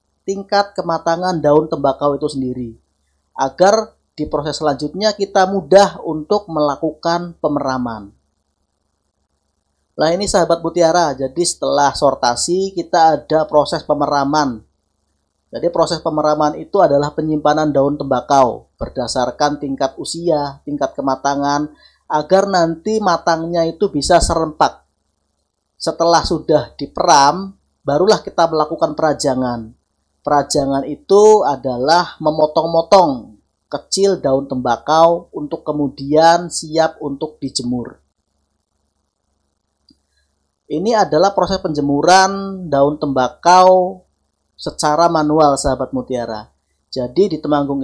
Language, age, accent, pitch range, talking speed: Indonesian, 30-49, native, 125-170 Hz, 95 wpm